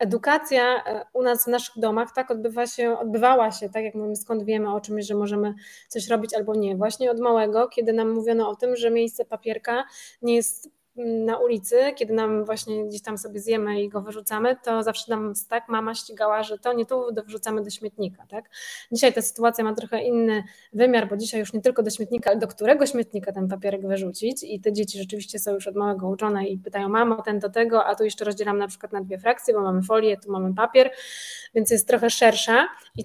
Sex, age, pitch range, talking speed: female, 20-39, 210-235 Hz, 210 wpm